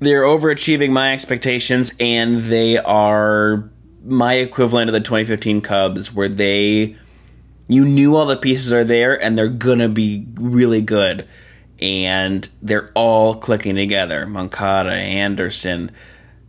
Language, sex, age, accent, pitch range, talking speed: English, male, 20-39, American, 105-125 Hz, 130 wpm